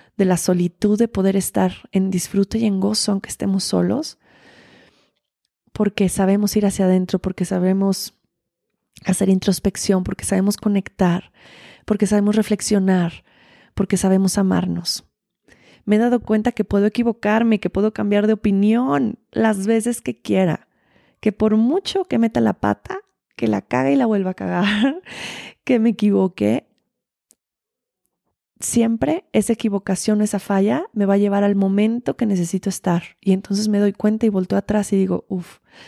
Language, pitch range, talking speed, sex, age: Spanish, 195-230 Hz, 155 wpm, female, 20-39